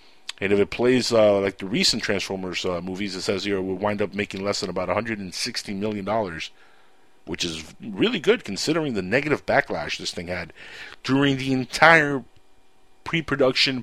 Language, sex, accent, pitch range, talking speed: English, male, American, 105-175 Hz, 165 wpm